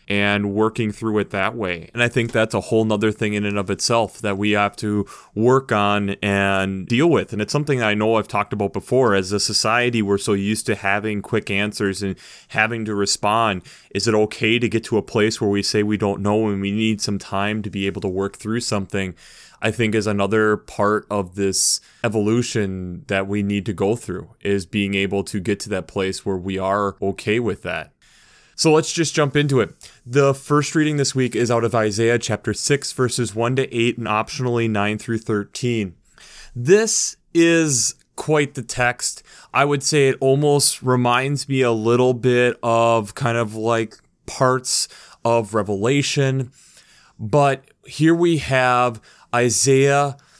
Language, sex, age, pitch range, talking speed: English, male, 20-39, 100-125 Hz, 185 wpm